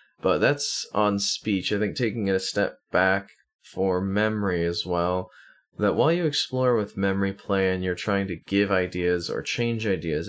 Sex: male